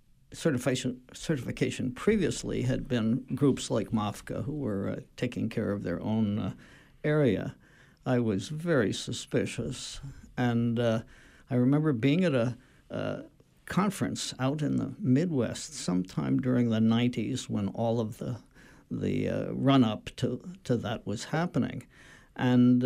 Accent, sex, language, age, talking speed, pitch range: American, male, English, 60-79, 140 wpm, 115-135 Hz